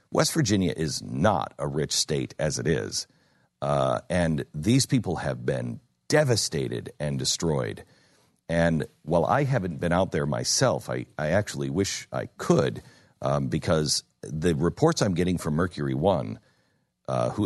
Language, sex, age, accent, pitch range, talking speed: English, male, 50-69, American, 80-105 Hz, 150 wpm